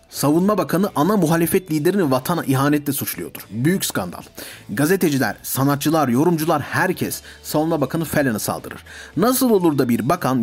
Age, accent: 40-59, native